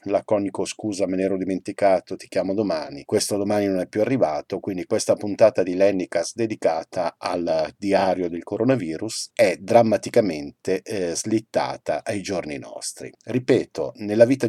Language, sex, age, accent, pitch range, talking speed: Italian, male, 50-69, native, 95-120 Hz, 145 wpm